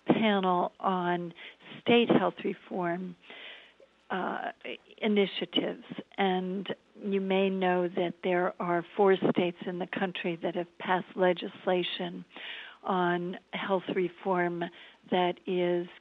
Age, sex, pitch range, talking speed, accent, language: 60-79, female, 180-205 Hz, 105 wpm, American, English